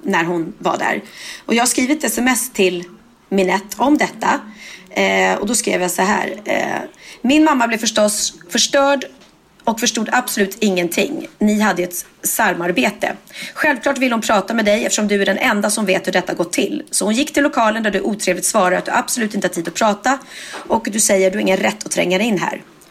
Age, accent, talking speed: 30-49, native, 210 wpm